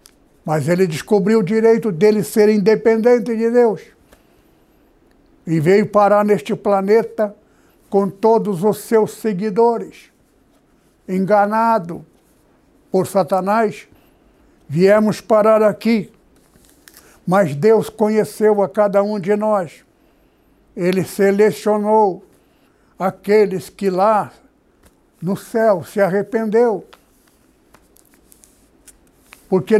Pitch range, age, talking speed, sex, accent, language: 195-220 Hz, 60-79, 90 wpm, male, Brazilian, Portuguese